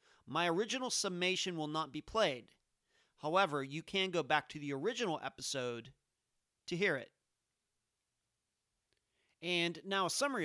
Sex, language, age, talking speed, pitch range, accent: male, English, 40-59, 130 wpm, 140-185 Hz, American